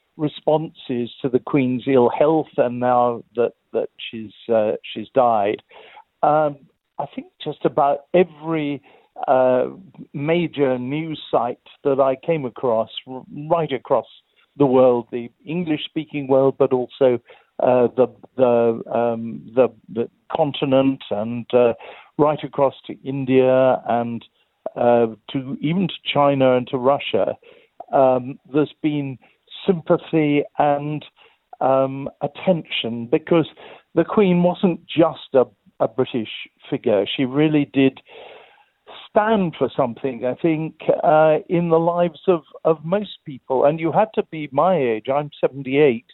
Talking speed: 130 wpm